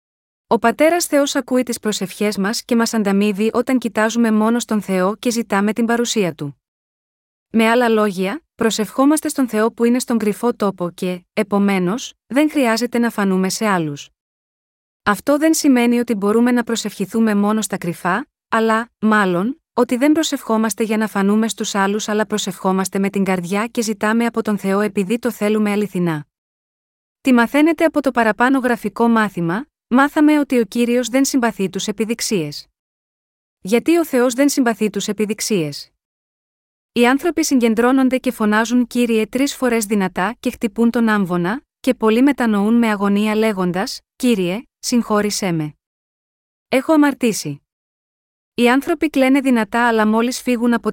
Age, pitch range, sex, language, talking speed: 30-49, 205-245 Hz, female, Greek, 150 wpm